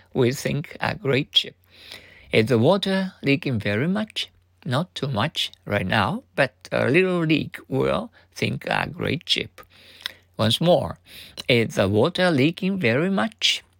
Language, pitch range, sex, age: Japanese, 95-150 Hz, male, 60-79